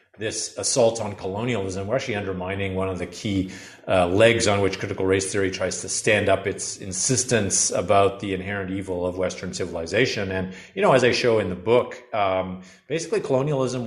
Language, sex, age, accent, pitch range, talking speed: English, male, 40-59, American, 95-115 Hz, 185 wpm